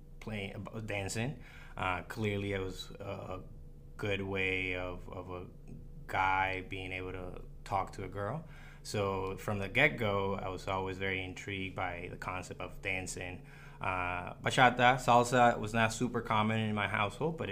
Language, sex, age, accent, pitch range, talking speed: English, male, 20-39, American, 95-115 Hz, 160 wpm